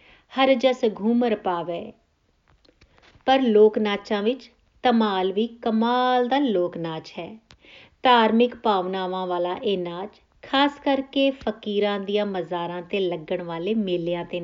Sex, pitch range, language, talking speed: female, 185-250 Hz, Punjabi, 115 wpm